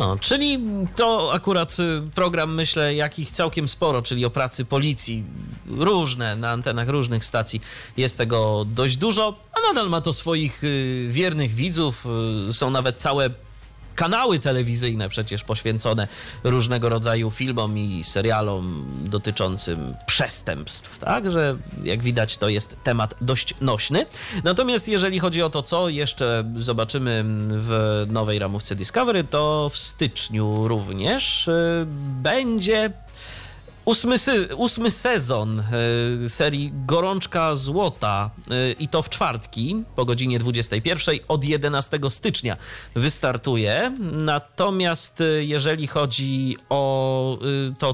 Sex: male